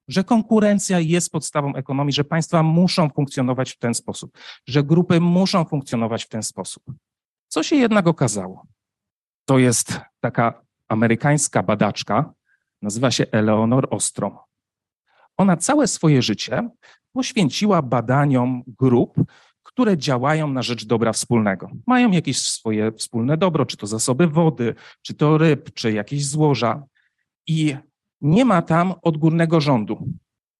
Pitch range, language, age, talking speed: 120-175 Hz, Polish, 40-59, 130 wpm